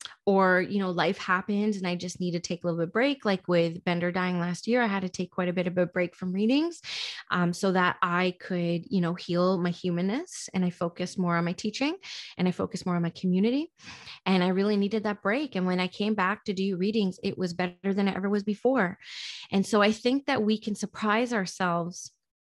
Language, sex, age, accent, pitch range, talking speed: English, female, 20-39, American, 180-205 Hz, 235 wpm